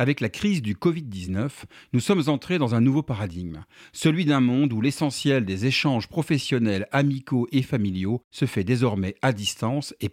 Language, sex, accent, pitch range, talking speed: French, male, French, 110-150 Hz, 170 wpm